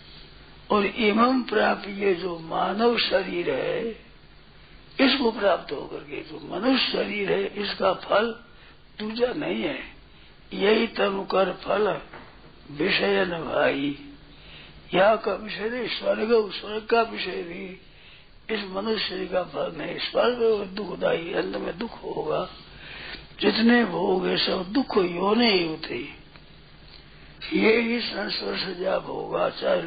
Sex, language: male, Hindi